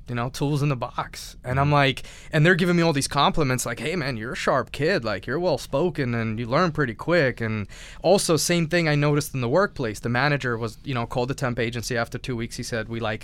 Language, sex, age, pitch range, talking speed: English, male, 20-39, 115-140 Hz, 260 wpm